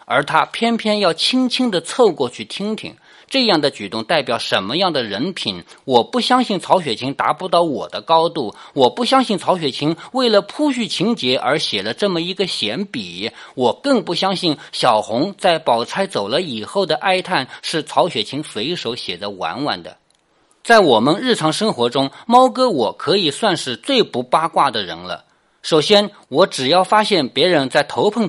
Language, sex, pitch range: Chinese, male, 160-245 Hz